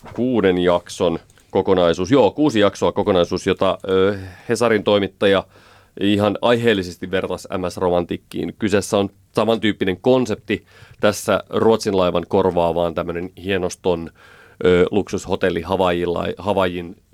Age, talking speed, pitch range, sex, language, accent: 30-49, 100 wpm, 95-105 Hz, male, Finnish, native